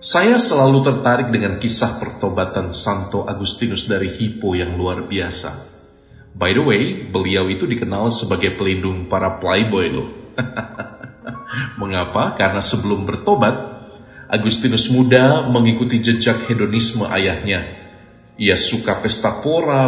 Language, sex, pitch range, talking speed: Indonesian, male, 100-125 Hz, 110 wpm